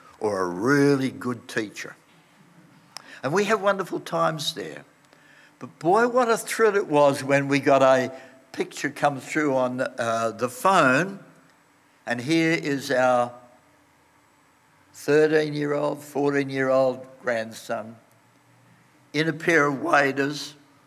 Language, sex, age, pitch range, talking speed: English, male, 60-79, 125-155 Hz, 120 wpm